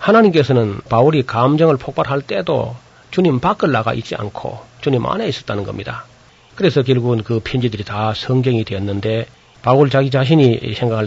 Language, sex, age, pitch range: Korean, male, 40-59, 115-135 Hz